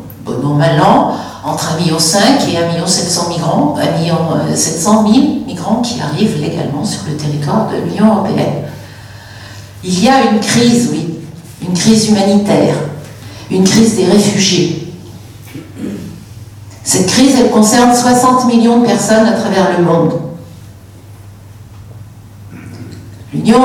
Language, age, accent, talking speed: French, 50-69, French, 120 wpm